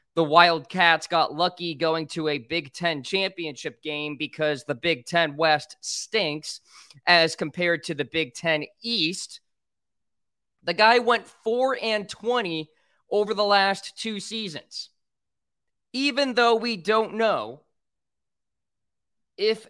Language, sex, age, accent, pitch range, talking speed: English, male, 20-39, American, 160-225 Hz, 125 wpm